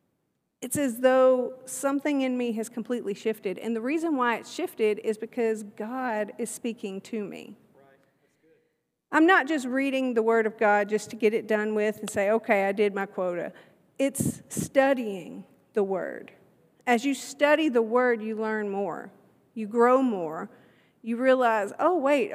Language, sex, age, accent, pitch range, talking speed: English, female, 40-59, American, 215-260 Hz, 165 wpm